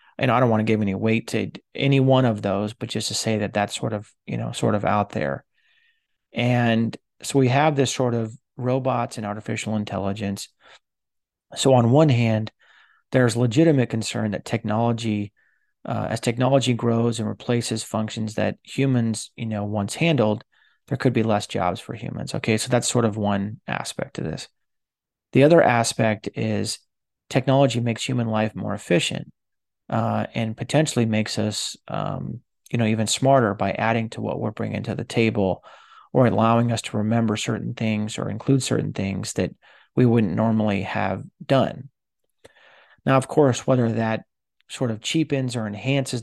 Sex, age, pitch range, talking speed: male, 30-49, 105-125 Hz, 170 wpm